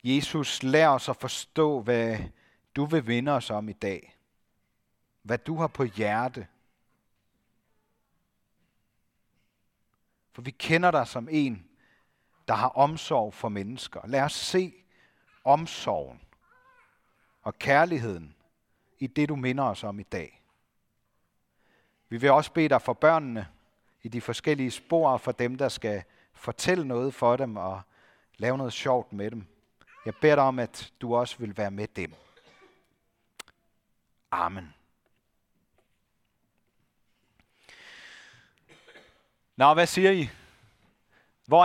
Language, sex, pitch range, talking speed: Danish, male, 110-155 Hz, 120 wpm